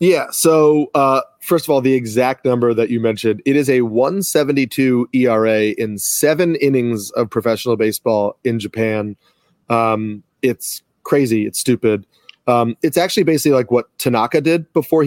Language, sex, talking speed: English, male, 155 wpm